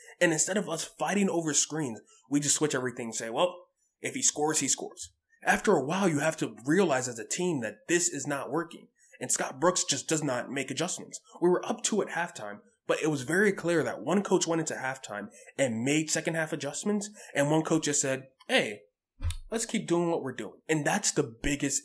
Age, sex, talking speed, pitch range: 20-39, male, 220 wpm, 120-170 Hz